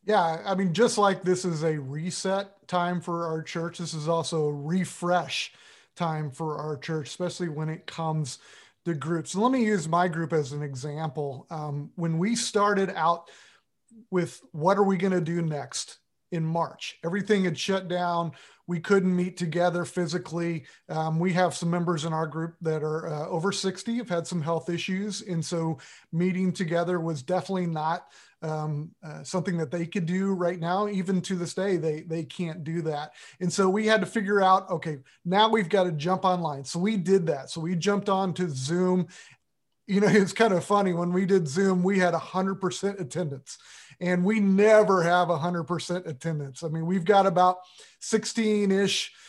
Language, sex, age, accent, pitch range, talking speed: English, male, 30-49, American, 165-195 Hz, 185 wpm